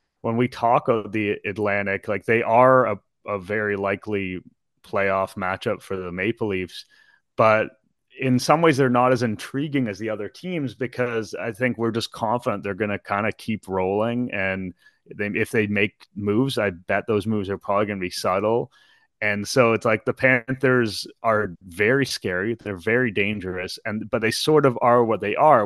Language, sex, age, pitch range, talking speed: English, male, 30-49, 105-125 Hz, 190 wpm